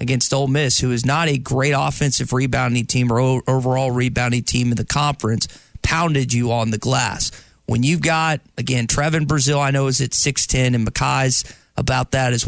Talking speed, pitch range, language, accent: 190 wpm, 125-155 Hz, English, American